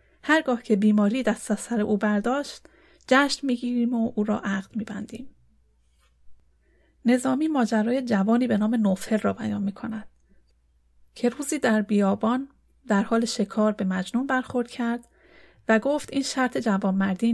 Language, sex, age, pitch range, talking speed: Persian, female, 30-49, 200-245 Hz, 140 wpm